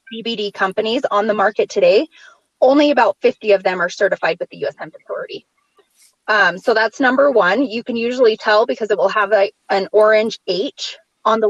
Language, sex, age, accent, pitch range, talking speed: English, female, 20-39, American, 205-265 Hz, 190 wpm